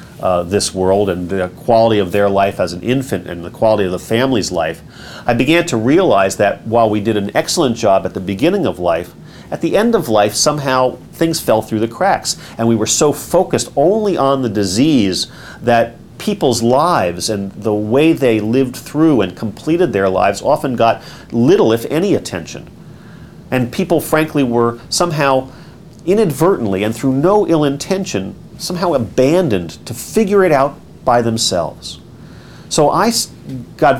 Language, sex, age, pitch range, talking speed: English, male, 40-59, 100-150 Hz, 170 wpm